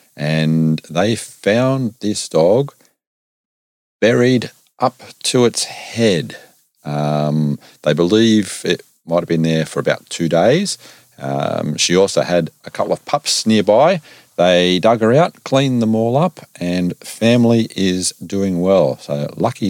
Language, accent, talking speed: English, Australian, 140 wpm